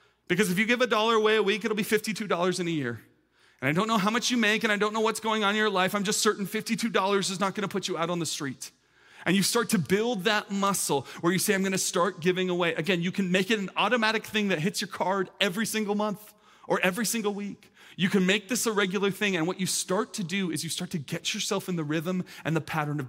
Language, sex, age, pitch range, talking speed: English, male, 30-49, 140-200 Hz, 280 wpm